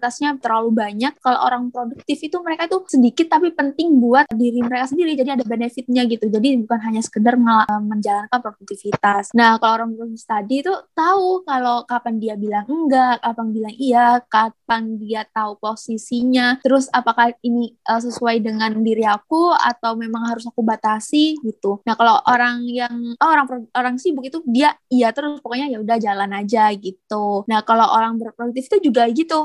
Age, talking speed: 20-39, 170 wpm